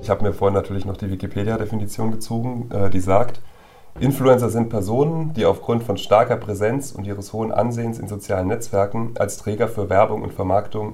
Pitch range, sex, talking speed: 95-110 Hz, male, 175 wpm